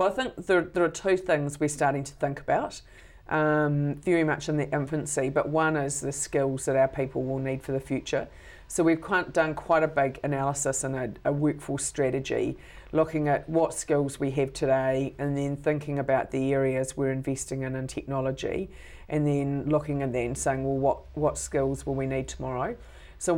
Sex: female